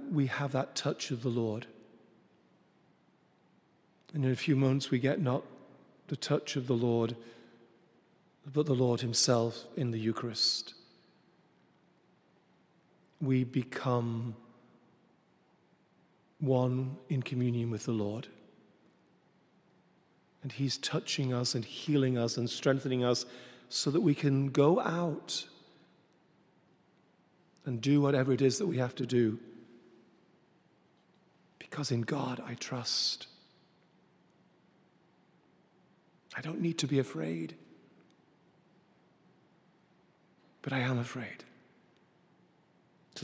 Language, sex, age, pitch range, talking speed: English, male, 40-59, 125-160 Hz, 105 wpm